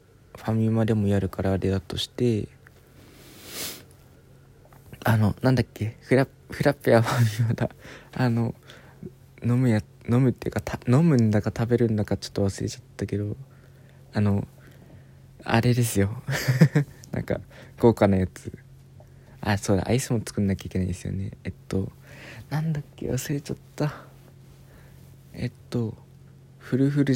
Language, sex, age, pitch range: Japanese, male, 20-39, 100-135 Hz